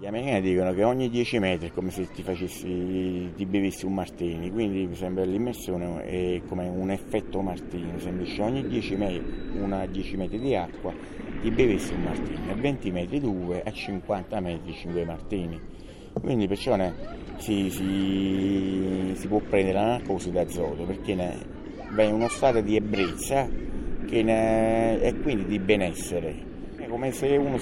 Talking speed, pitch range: 155 wpm, 95-110 Hz